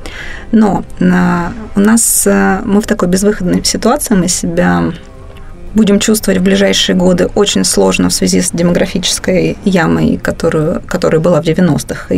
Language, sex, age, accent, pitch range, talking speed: Russian, female, 20-39, native, 185-215 Hz, 135 wpm